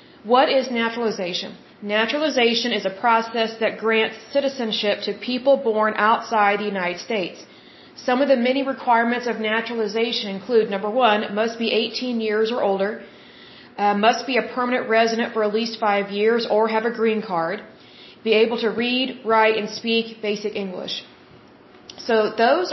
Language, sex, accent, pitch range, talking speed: Hindi, female, American, 210-240 Hz, 160 wpm